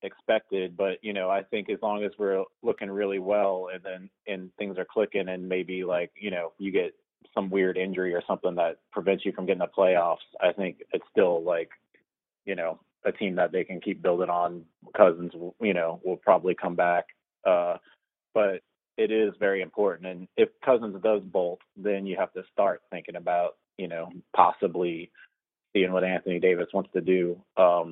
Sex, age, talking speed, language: male, 30-49, 190 wpm, English